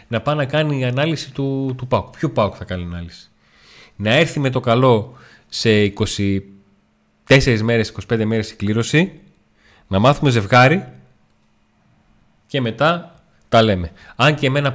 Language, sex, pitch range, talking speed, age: Greek, male, 100-130 Hz, 145 wpm, 30-49